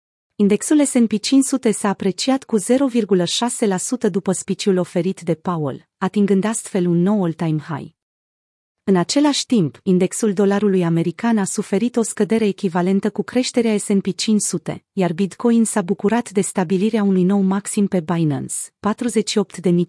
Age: 30-49